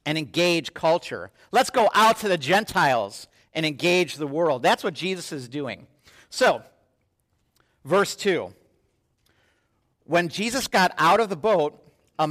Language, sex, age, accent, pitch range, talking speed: English, male, 50-69, American, 150-195 Hz, 140 wpm